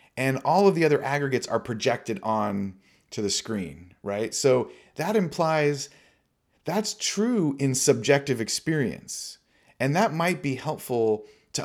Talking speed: 140 wpm